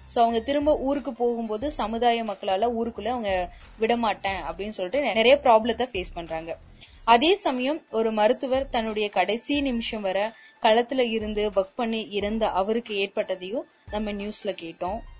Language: Tamil